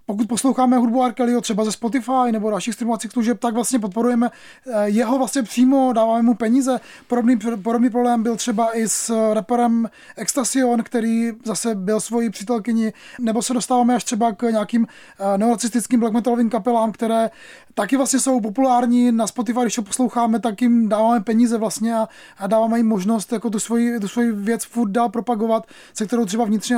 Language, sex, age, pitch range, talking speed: Czech, male, 20-39, 225-260 Hz, 175 wpm